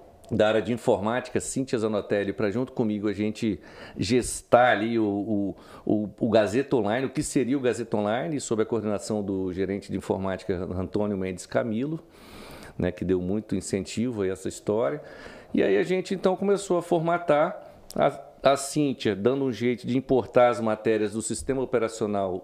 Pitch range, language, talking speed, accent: 105-145 Hz, Portuguese, 170 wpm, Brazilian